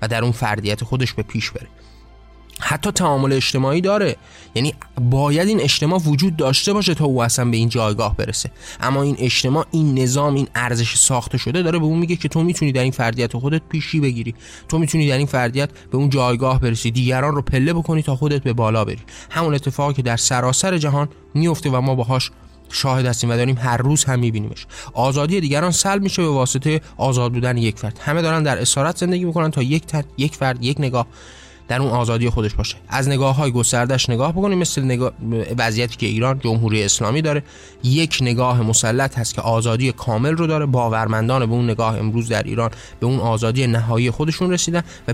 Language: Persian